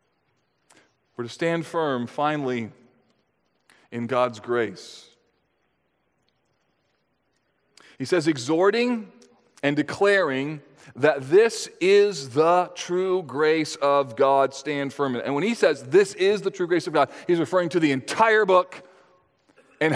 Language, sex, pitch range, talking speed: English, male, 150-200 Hz, 120 wpm